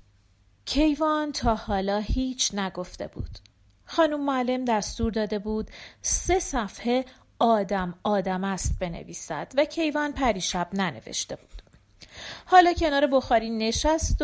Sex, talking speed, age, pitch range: female, 110 wpm, 40-59, 195-300 Hz